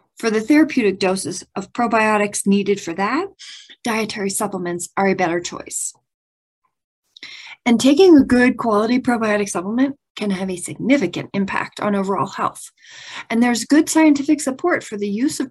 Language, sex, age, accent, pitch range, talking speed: English, female, 30-49, American, 200-285 Hz, 150 wpm